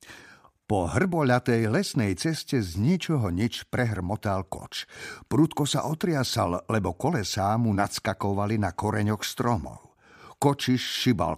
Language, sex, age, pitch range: Slovak, male, 50-69, 105-145 Hz